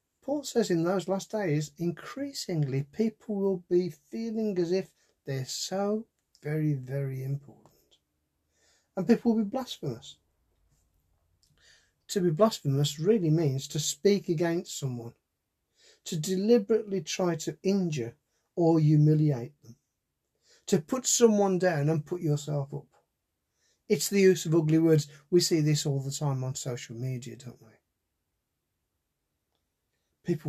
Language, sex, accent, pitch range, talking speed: English, male, British, 135-190 Hz, 130 wpm